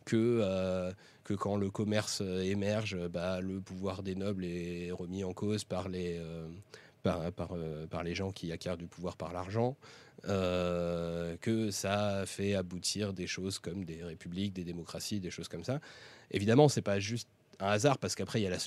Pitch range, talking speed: 90-115 Hz, 195 wpm